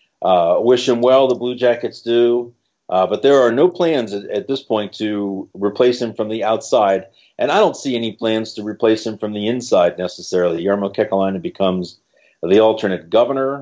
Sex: male